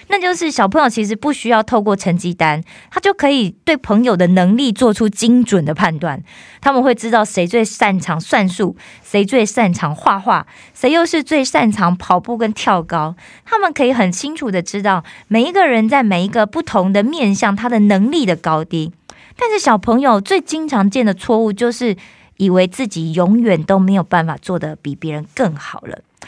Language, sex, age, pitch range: Korean, female, 20-39, 175-240 Hz